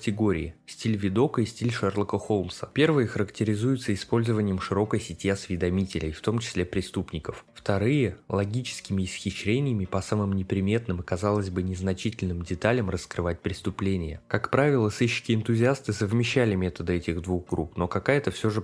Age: 20-39